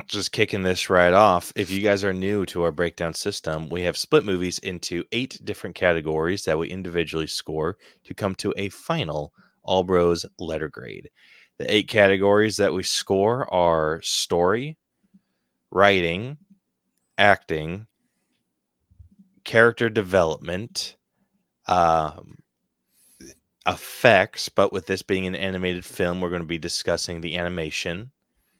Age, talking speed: 20-39, 130 wpm